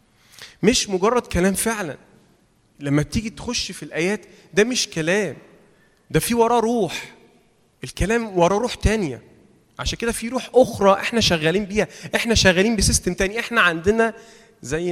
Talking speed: 140 wpm